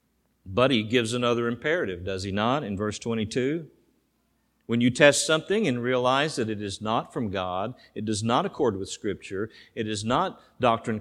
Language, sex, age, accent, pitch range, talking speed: English, male, 50-69, American, 110-140 Hz, 180 wpm